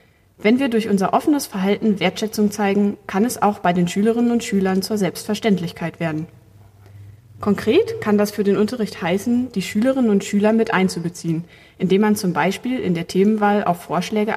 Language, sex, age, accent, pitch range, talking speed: German, female, 20-39, German, 180-215 Hz, 170 wpm